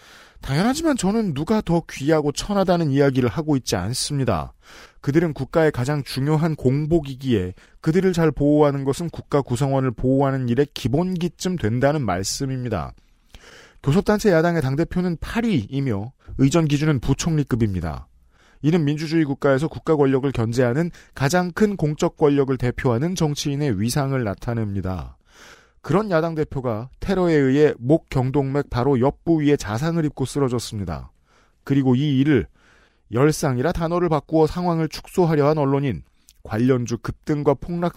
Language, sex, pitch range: Korean, male, 125-160 Hz